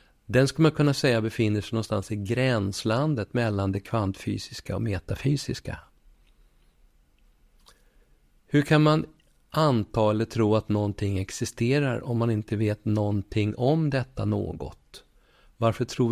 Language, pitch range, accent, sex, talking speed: Swedish, 105-130 Hz, native, male, 125 wpm